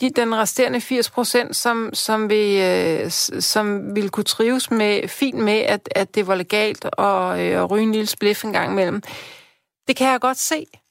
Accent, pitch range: native, 195-250 Hz